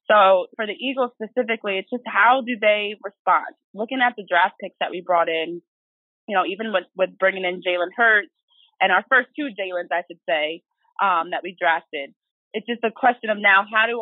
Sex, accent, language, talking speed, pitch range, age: female, American, English, 210 wpm, 180-240 Hz, 20-39